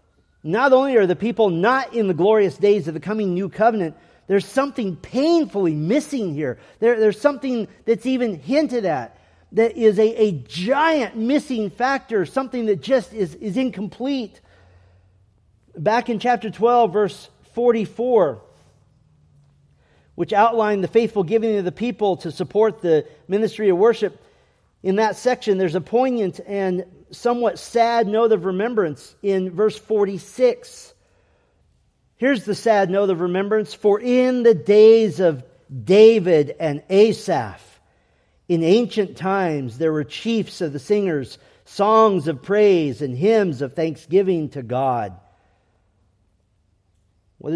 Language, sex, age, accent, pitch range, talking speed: English, male, 40-59, American, 135-225 Hz, 135 wpm